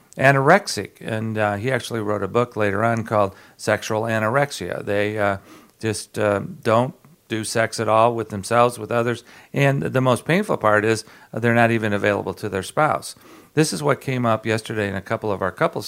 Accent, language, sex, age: American, English, male, 50-69